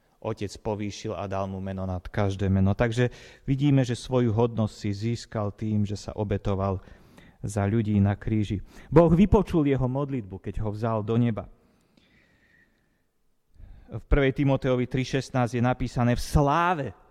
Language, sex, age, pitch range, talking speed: Slovak, male, 30-49, 100-125 Hz, 145 wpm